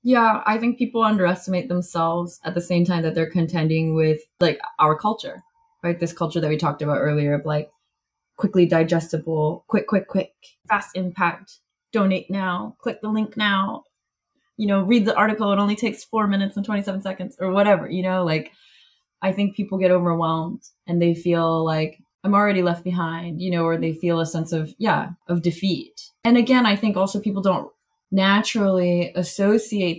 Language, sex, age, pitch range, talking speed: English, female, 20-39, 165-200 Hz, 180 wpm